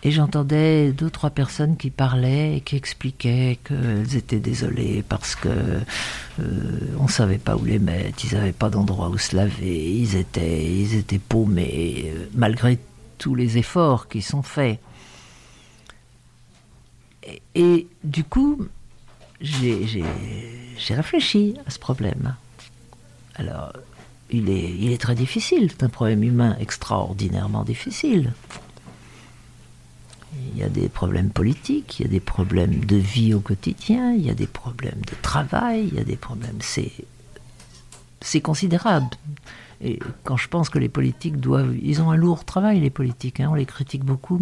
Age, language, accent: 60-79, French, French